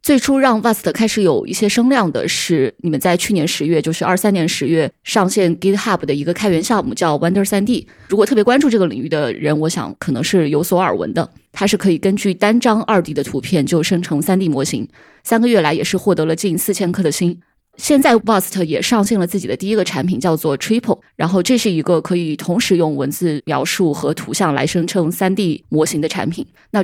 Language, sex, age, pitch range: Chinese, female, 20-39, 155-200 Hz